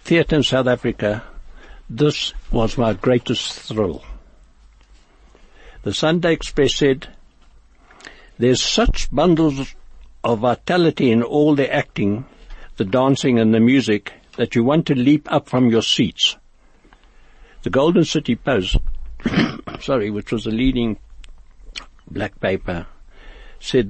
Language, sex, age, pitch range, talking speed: English, male, 60-79, 110-145 Hz, 120 wpm